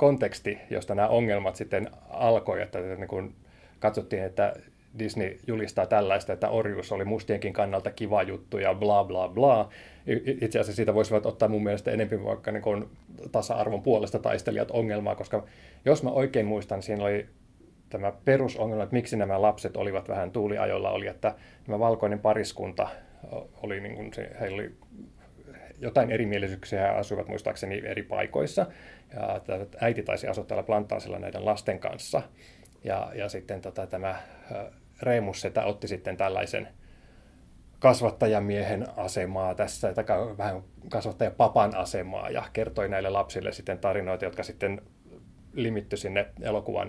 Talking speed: 135 wpm